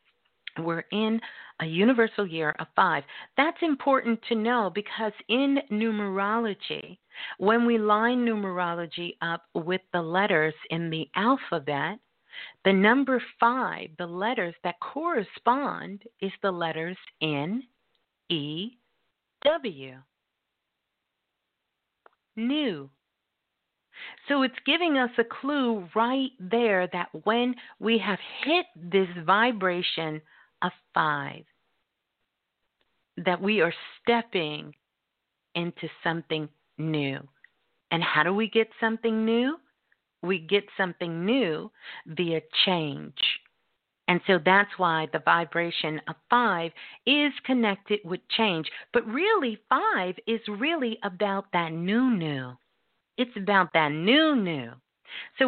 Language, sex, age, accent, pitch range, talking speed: English, female, 50-69, American, 170-235 Hz, 110 wpm